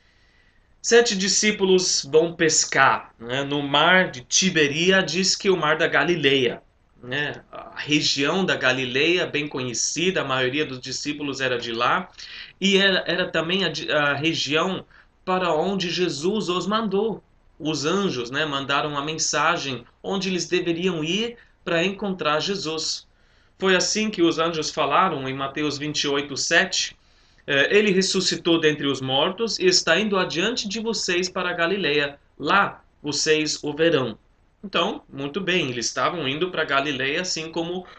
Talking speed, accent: 145 wpm, Brazilian